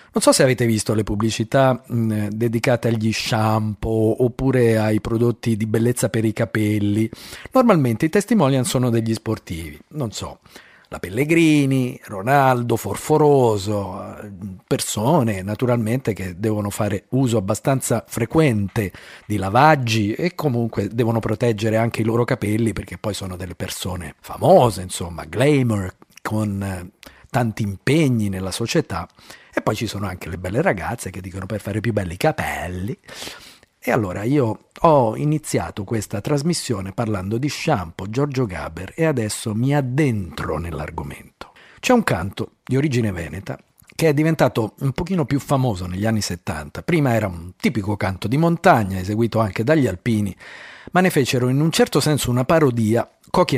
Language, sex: Italian, male